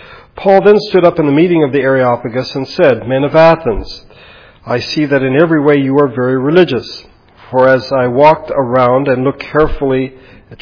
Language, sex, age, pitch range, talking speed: English, male, 50-69, 125-150 Hz, 190 wpm